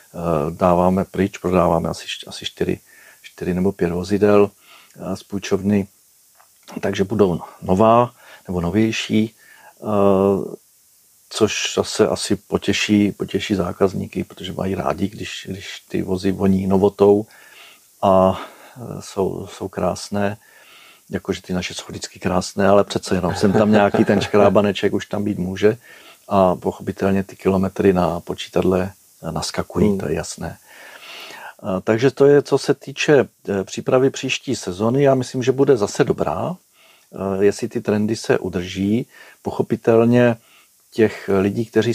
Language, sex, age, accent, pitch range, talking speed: Czech, male, 50-69, native, 95-110 Hz, 120 wpm